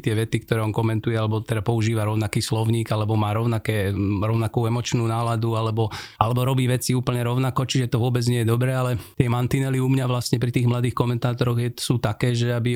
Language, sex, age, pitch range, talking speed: Slovak, male, 40-59, 110-125 Hz, 200 wpm